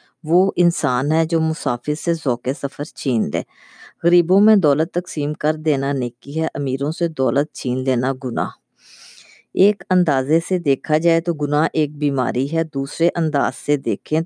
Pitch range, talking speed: 135-165 Hz, 160 wpm